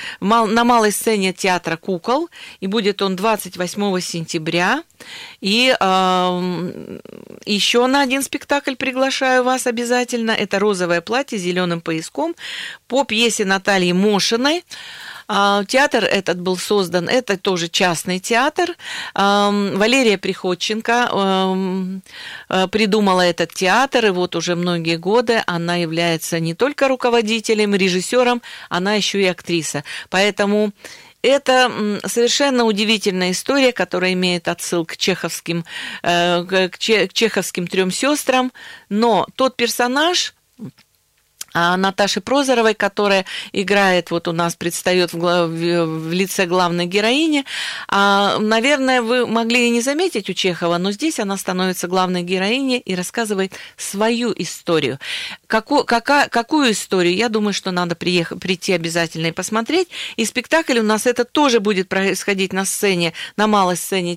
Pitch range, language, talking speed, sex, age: 180-235 Hz, Russian, 125 wpm, female, 40-59